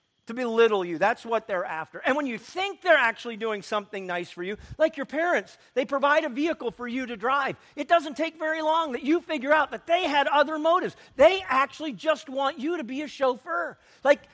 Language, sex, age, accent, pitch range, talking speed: English, male, 50-69, American, 230-315 Hz, 220 wpm